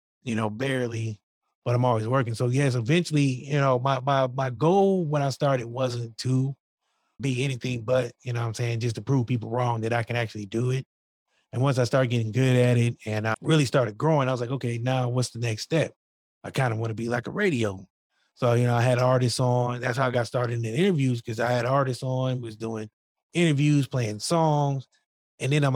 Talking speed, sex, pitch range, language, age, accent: 230 wpm, male, 115-135 Hz, English, 30-49, American